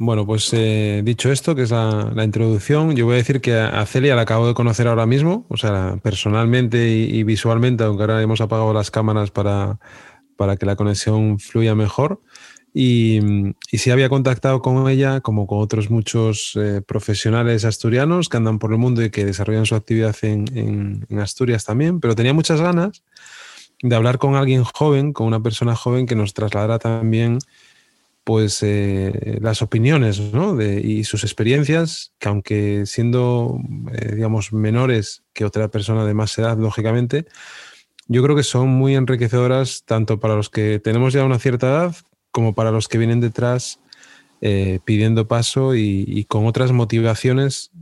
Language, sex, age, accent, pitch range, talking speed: Spanish, male, 20-39, Spanish, 110-125 Hz, 175 wpm